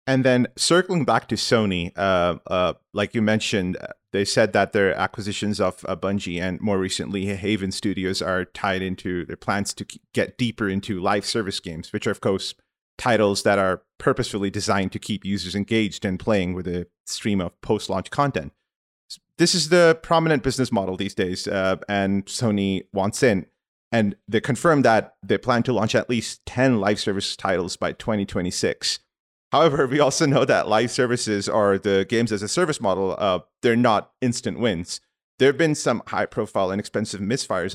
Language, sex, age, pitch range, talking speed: English, male, 30-49, 95-125 Hz, 175 wpm